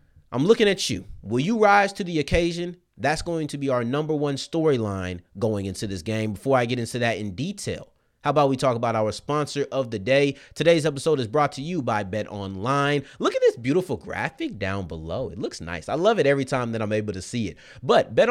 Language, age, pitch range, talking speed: English, 30-49, 110-145 Hz, 235 wpm